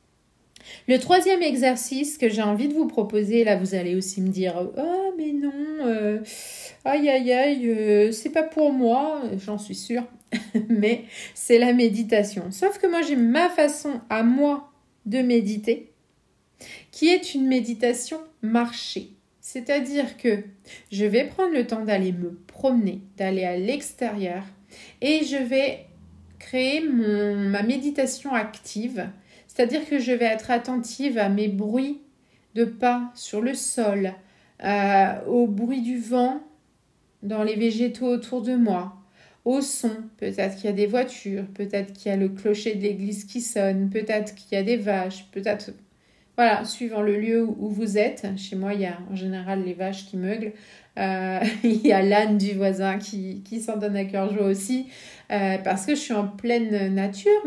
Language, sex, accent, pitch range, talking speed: French, female, French, 200-255 Hz, 165 wpm